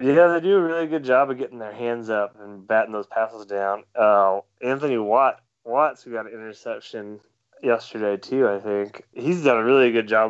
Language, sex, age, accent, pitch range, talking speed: English, male, 20-39, American, 105-120 Hz, 205 wpm